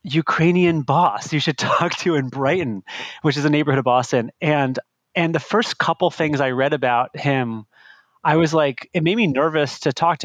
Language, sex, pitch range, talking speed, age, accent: English, male, 125-155 Hz, 200 wpm, 30-49, American